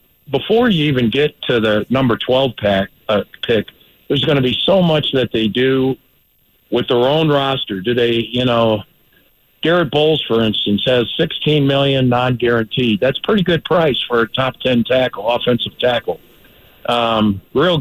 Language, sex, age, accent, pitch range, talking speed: English, male, 50-69, American, 120-145 Hz, 165 wpm